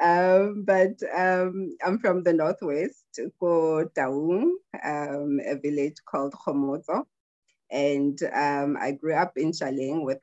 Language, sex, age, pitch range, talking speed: English, female, 30-49, 135-165 Hz, 125 wpm